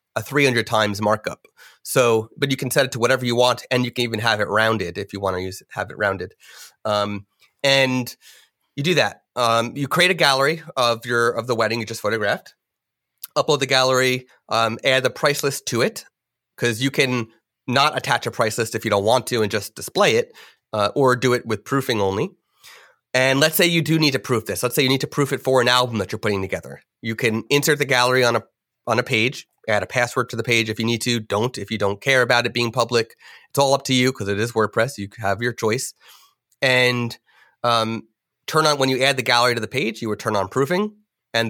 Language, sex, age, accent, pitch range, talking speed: English, male, 30-49, American, 110-135 Hz, 240 wpm